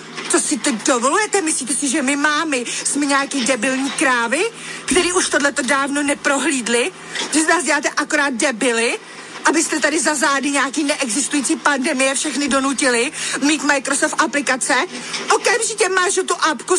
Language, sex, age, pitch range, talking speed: Slovak, female, 40-59, 280-345 Hz, 140 wpm